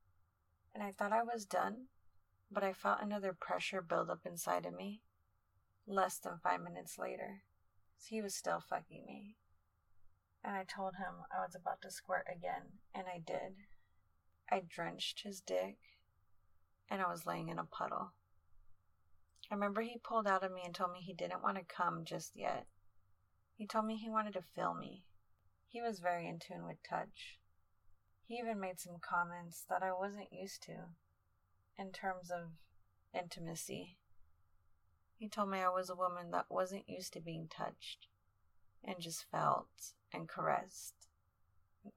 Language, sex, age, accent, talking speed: English, female, 30-49, American, 165 wpm